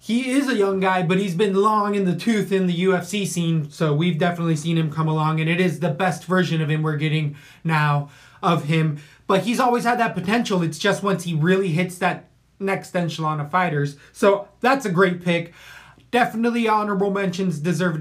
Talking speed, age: 205 wpm, 20-39